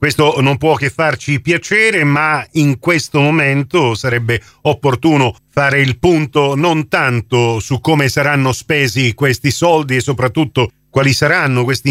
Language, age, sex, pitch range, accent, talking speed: Italian, 40-59, male, 130-160 Hz, native, 140 wpm